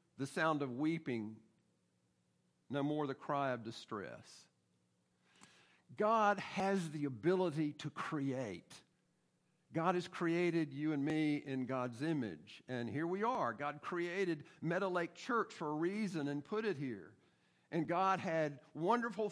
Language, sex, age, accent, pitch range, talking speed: English, male, 50-69, American, 135-180 Hz, 140 wpm